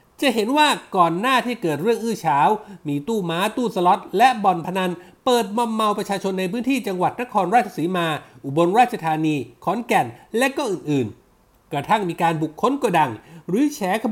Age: 60-79